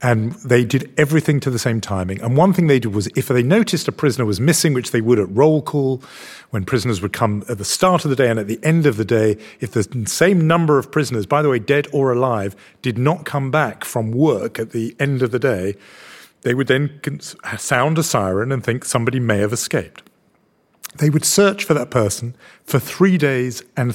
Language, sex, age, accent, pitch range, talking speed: English, male, 40-59, British, 115-150 Hz, 225 wpm